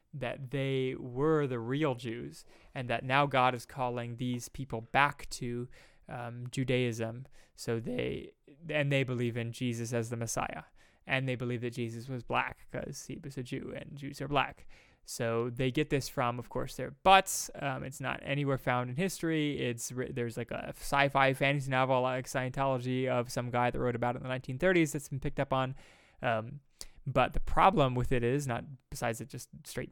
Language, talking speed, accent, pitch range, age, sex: English, 190 wpm, American, 120-140 Hz, 20-39, male